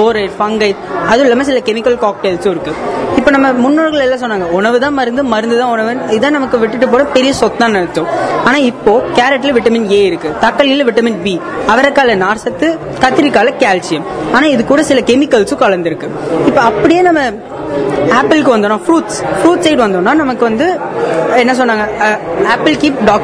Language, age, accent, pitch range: Tamil, 20-39, native, 220-290 Hz